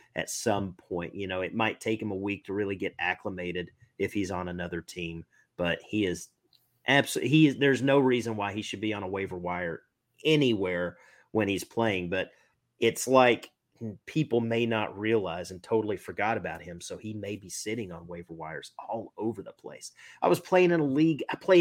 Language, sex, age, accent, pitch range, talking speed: English, male, 30-49, American, 100-125 Hz, 205 wpm